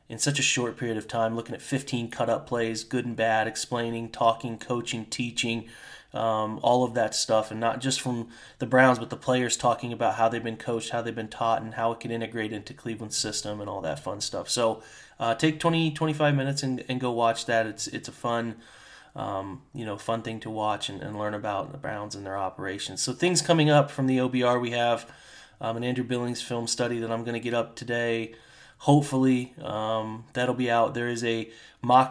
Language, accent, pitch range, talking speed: English, American, 115-125 Hz, 220 wpm